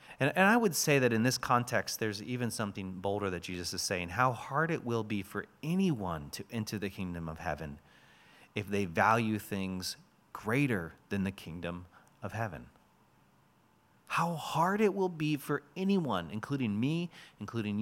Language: English